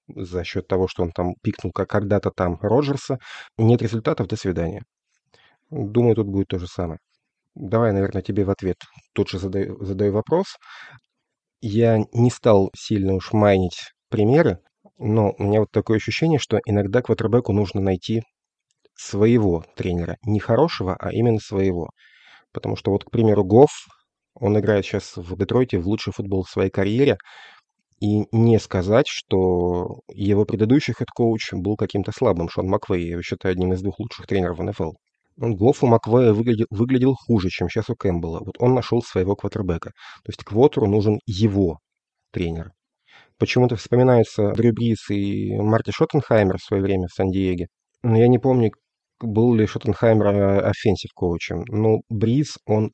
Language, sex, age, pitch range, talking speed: Russian, male, 30-49, 95-115 Hz, 155 wpm